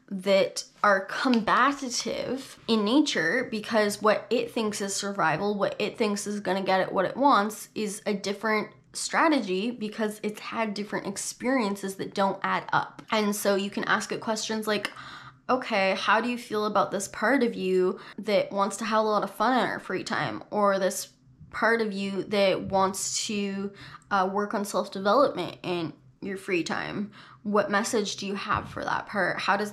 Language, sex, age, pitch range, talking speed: English, female, 10-29, 195-225 Hz, 180 wpm